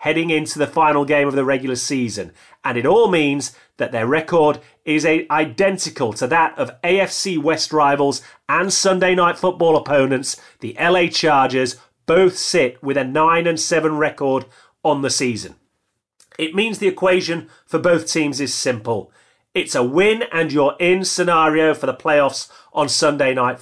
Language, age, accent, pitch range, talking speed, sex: English, 30-49, British, 130-165 Hz, 150 wpm, male